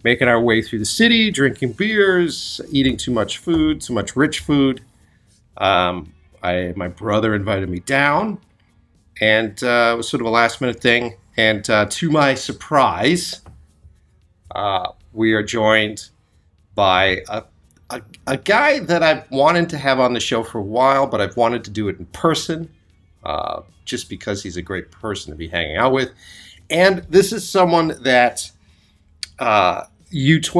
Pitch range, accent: 95-140 Hz, American